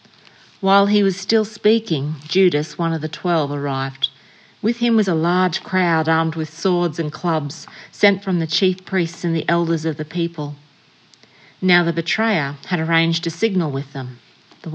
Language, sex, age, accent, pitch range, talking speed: English, female, 40-59, Australian, 155-195 Hz, 175 wpm